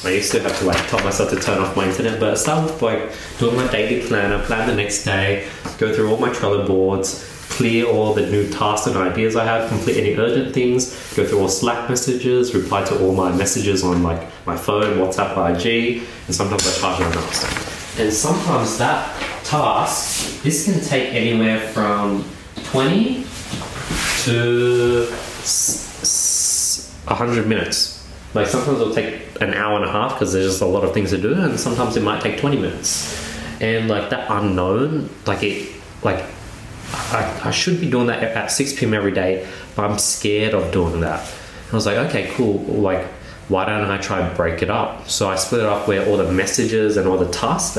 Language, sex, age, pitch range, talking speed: English, male, 20-39, 95-120 Hz, 195 wpm